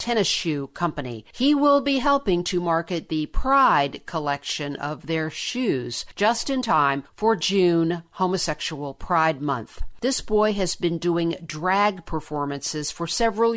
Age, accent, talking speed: 50-69, American, 140 wpm